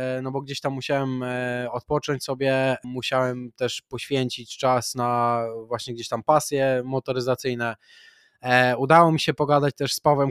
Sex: male